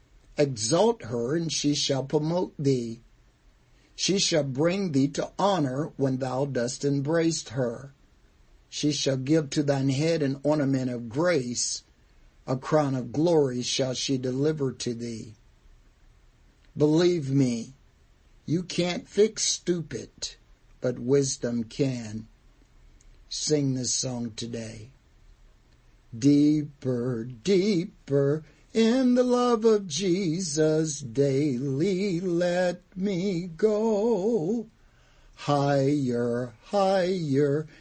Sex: male